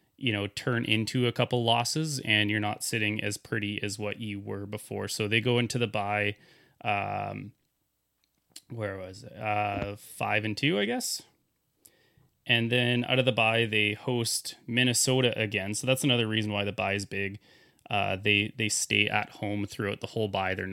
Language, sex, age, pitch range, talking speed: English, male, 20-39, 105-130 Hz, 185 wpm